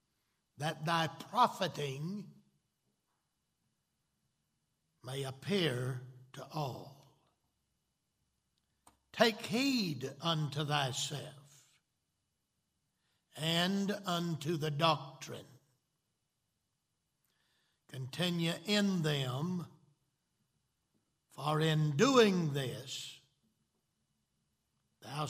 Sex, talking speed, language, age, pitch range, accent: male, 55 wpm, English, 60-79, 130-170 Hz, American